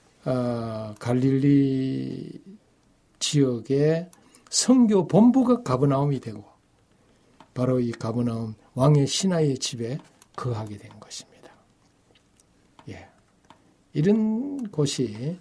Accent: native